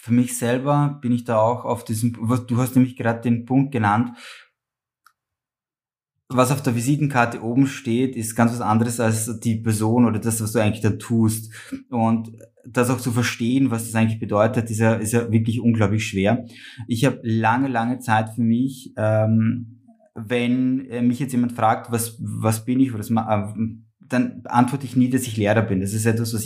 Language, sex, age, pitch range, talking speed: German, male, 20-39, 110-125 Hz, 185 wpm